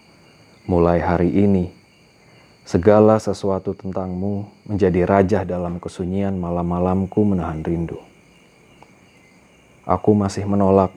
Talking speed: 90 wpm